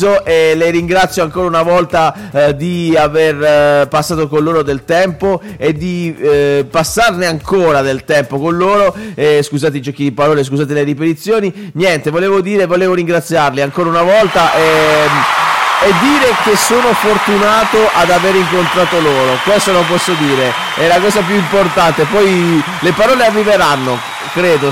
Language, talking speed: Italian, 155 wpm